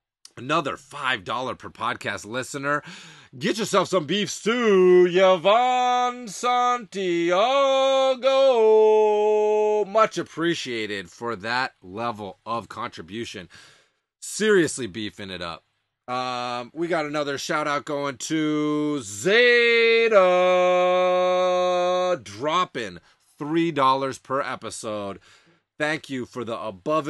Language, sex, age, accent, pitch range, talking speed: English, male, 30-49, American, 120-180 Hz, 90 wpm